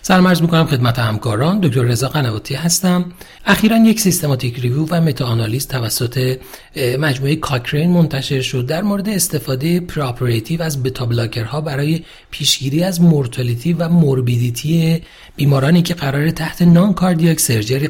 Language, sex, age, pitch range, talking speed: Persian, male, 40-59, 135-175 Hz, 125 wpm